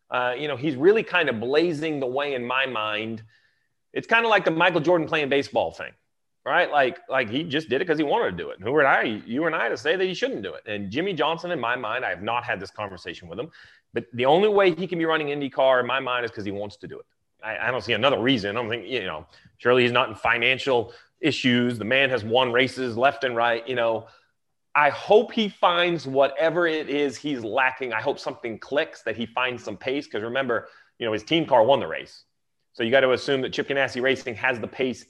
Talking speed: 260 wpm